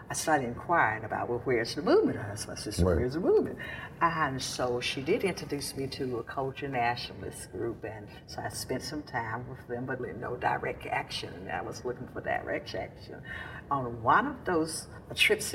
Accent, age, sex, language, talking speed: American, 60-79, female, English, 185 wpm